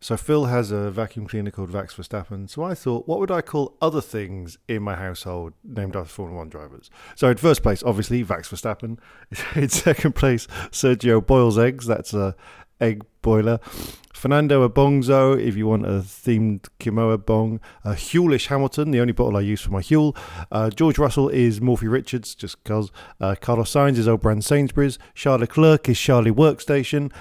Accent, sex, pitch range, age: British, male, 110-140 Hz, 50-69